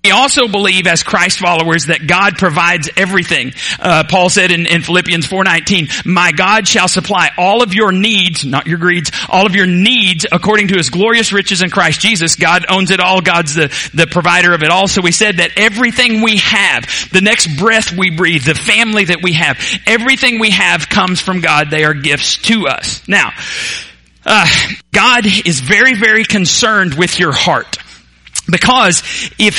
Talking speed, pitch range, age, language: 185 wpm, 165-205 Hz, 40-59, English